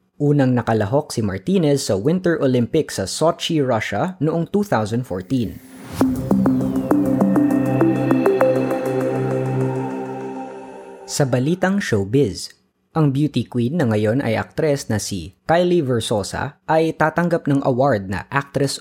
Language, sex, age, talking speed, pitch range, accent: Filipino, female, 20-39, 100 wpm, 105-150 Hz, native